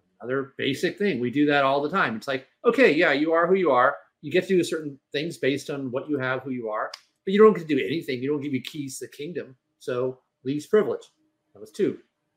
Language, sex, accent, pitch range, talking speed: English, male, American, 135-190 Hz, 255 wpm